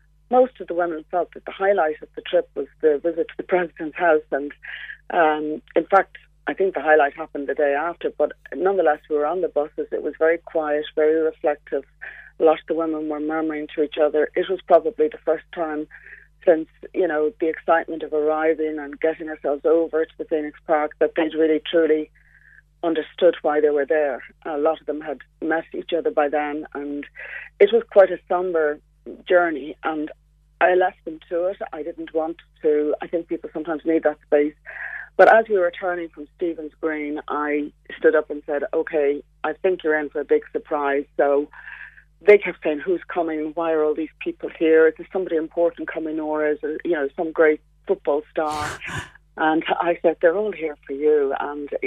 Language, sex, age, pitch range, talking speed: English, female, 40-59, 150-170 Hz, 200 wpm